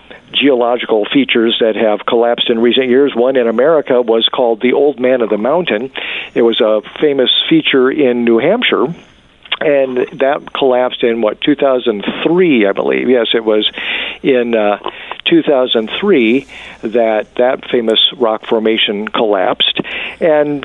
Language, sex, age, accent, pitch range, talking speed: English, male, 50-69, American, 115-145 Hz, 140 wpm